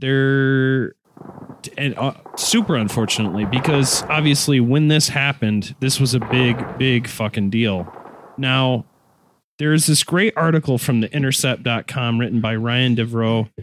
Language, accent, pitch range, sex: English, American, 110-145 Hz, male